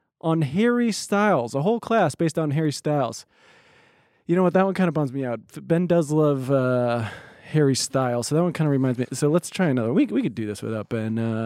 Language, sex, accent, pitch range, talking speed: English, male, American, 135-200 Hz, 230 wpm